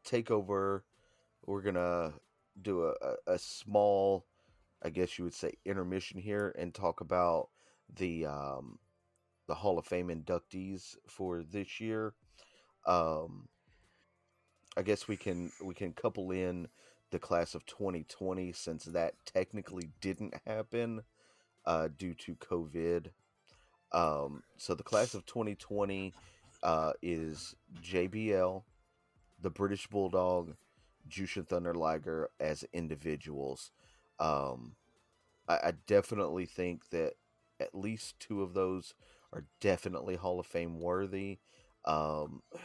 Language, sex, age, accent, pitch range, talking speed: English, male, 30-49, American, 85-100 Hz, 120 wpm